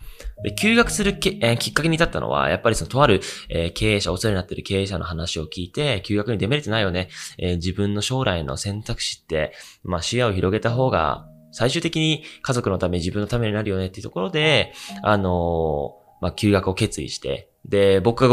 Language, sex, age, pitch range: Japanese, male, 20-39, 90-120 Hz